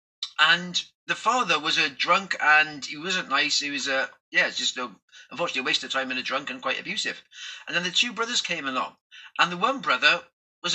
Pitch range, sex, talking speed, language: 185-245 Hz, male, 225 wpm, English